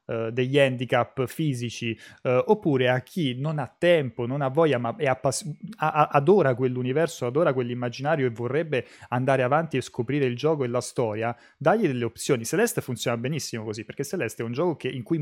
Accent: native